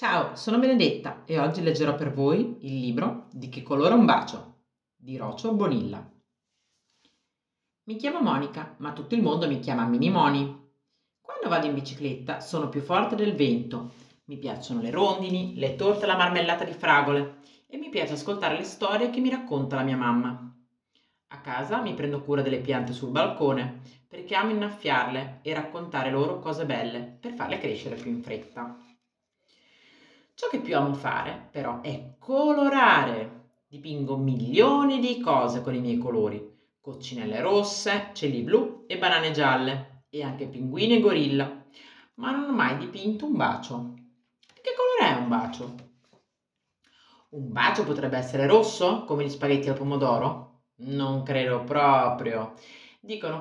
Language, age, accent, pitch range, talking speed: Italian, 40-59, native, 130-200 Hz, 155 wpm